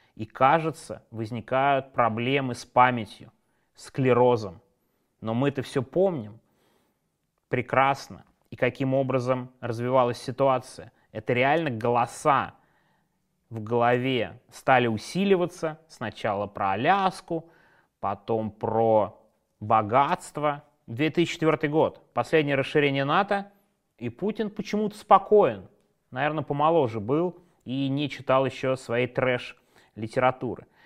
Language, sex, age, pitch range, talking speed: Russian, male, 20-39, 120-160 Hz, 100 wpm